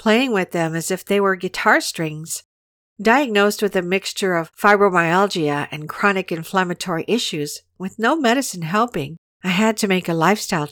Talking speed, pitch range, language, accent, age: 160 wpm, 165-215 Hz, English, American, 50-69